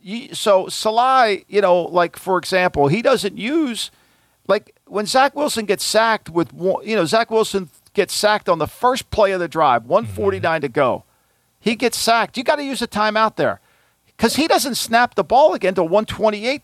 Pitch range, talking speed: 185-240 Hz, 200 wpm